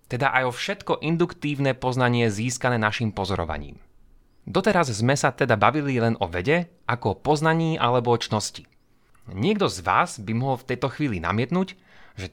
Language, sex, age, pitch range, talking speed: Slovak, male, 30-49, 115-160 Hz, 160 wpm